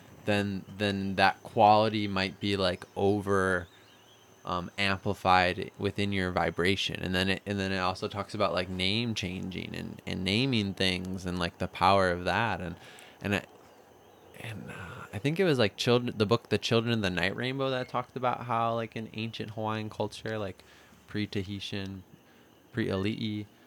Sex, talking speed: male, 170 wpm